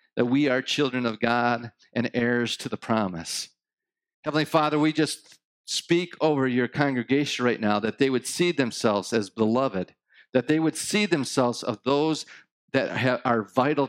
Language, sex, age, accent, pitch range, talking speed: English, male, 50-69, American, 95-145 Hz, 165 wpm